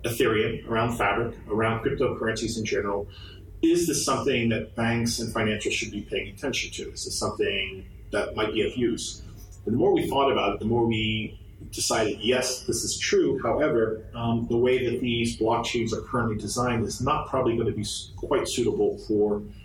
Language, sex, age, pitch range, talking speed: English, male, 30-49, 100-120 Hz, 185 wpm